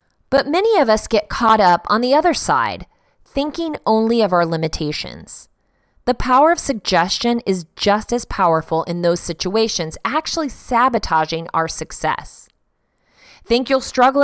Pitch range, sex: 170-260 Hz, female